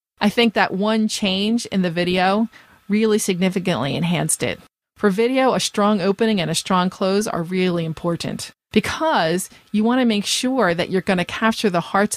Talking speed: 180 wpm